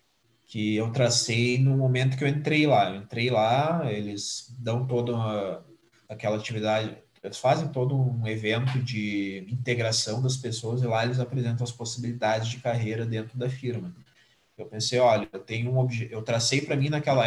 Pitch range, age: 115-140 Hz, 20-39